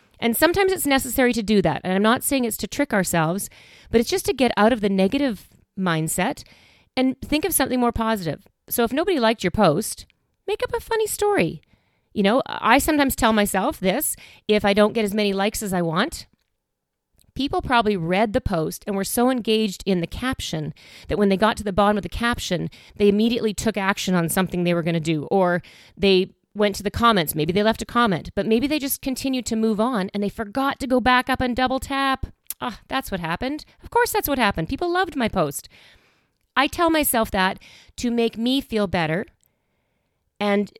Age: 40-59